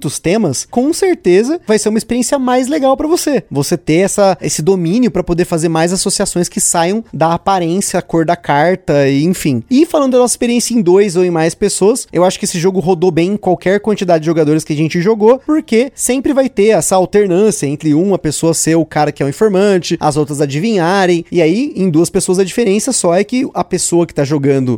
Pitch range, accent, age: 165-225 Hz, Brazilian, 20-39